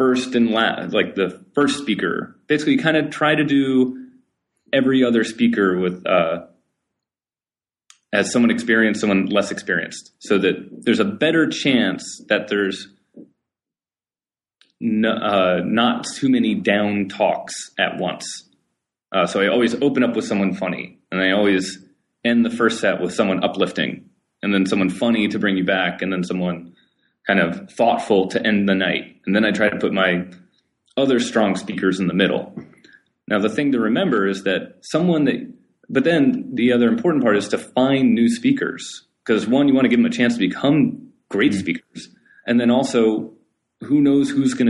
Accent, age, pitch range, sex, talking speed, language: American, 30-49, 95-150 Hz, male, 175 wpm, English